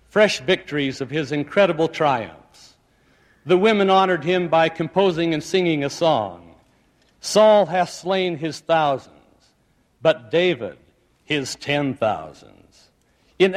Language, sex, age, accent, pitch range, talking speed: English, male, 60-79, American, 145-180 Hz, 120 wpm